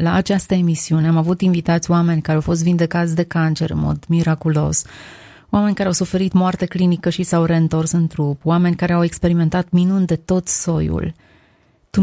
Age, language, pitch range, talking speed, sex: 30-49, Romanian, 160-185 Hz, 180 wpm, female